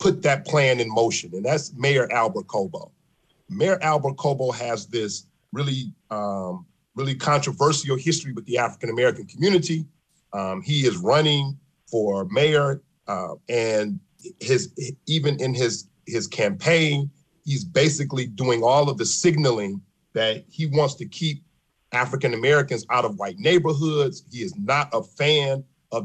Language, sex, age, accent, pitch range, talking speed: English, male, 40-59, American, 120-160 Hz, 145 wpm